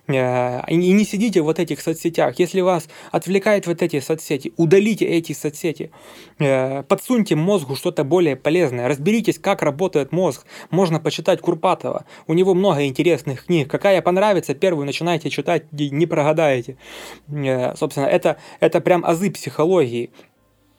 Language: Russian